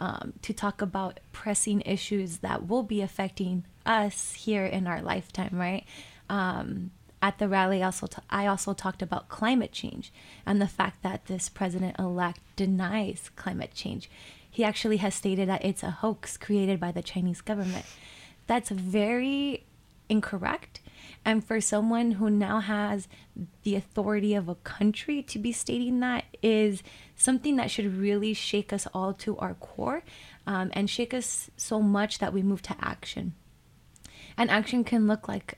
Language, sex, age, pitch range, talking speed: English, female, 20-39, 190-215 Hz, 160 wpm